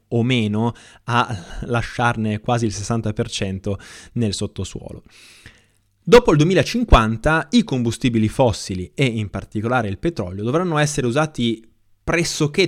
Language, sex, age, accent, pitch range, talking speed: Italian, male, 20-39, native, 105-135 Hz, 115 wpm